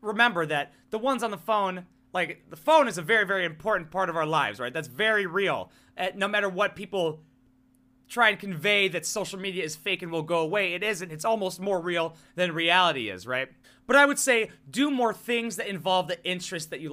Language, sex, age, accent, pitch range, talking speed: English, male, 30-49, American, 170-225 Hz, 225 wpm